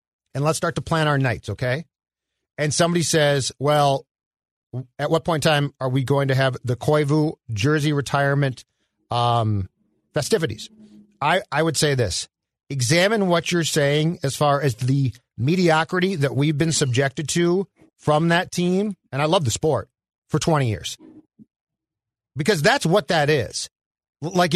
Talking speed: 155 wpm